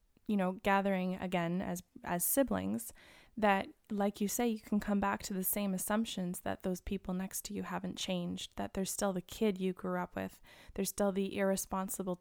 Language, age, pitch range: English, 20-39, 180-210 Hz